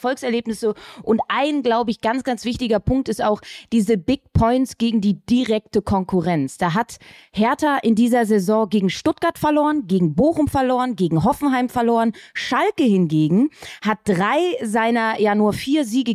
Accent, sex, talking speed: German, female, 155 wpm